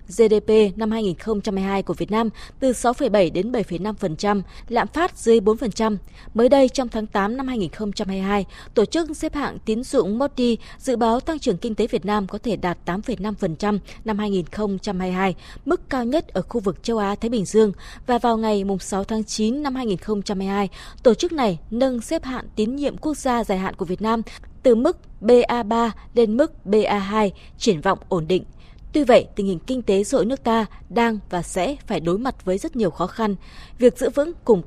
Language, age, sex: Vietnamese, 20-39, female